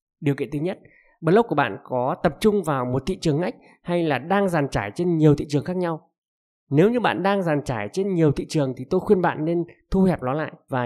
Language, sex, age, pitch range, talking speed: Vietnamese, male, 20-39, 135-185 Hz, 255 wpm